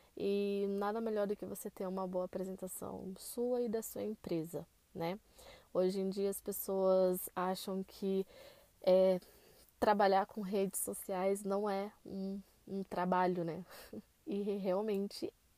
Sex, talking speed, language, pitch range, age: female, 135 wpm, Portuguese, 185-210 Hz, 20-39